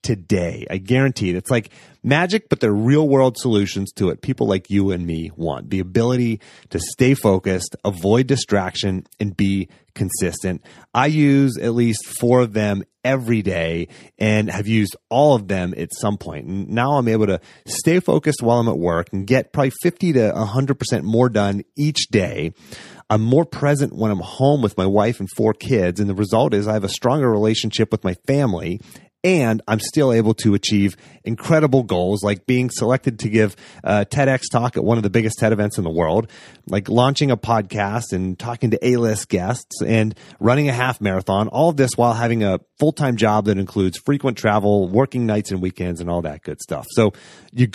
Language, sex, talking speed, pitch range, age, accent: English, male, 195 wpm, 95-125 Hz, 30-49, American